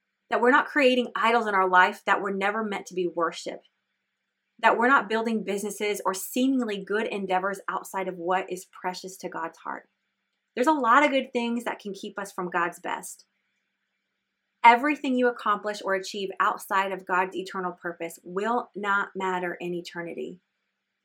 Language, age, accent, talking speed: English, 30-49, American, 170 wpm